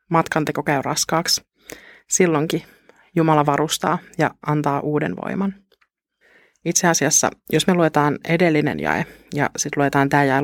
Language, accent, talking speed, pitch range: Finnish, native, 125 wpm, 150-175 Hz